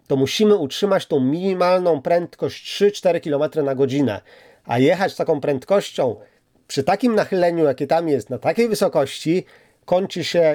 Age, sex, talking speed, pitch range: 40-59, male, 150 wpm, 160-205 Hz